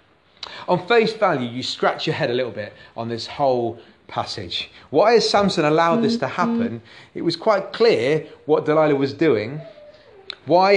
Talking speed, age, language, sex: 165 wpm, 30-49, English, male